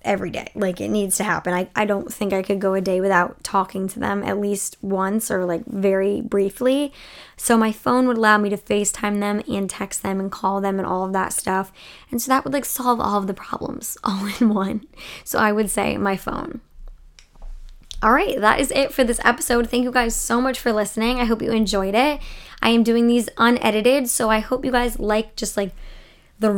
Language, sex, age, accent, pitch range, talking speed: English, male, 10-29, American, 200-245 Hz, 225 wpm